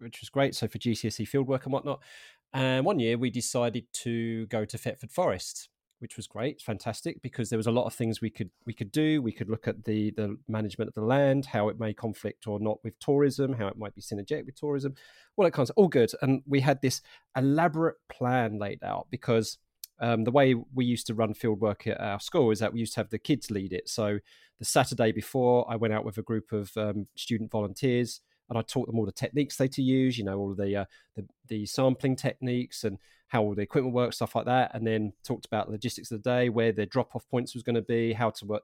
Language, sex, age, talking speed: English, male, 30-49, 250 wpm